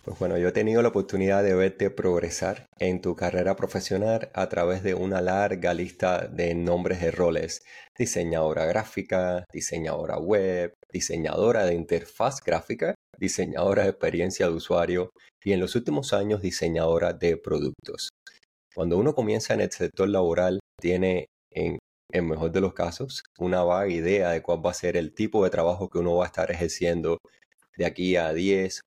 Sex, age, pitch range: male, 30-49, 85-95 Hz